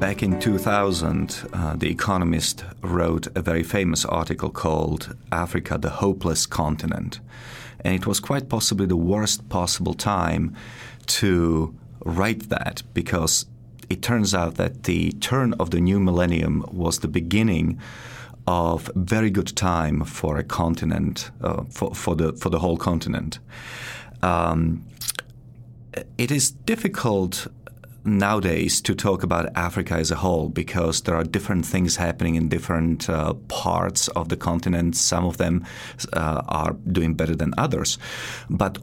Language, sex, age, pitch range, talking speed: English, male, 40-59, 85-110 Hz, 140 wpm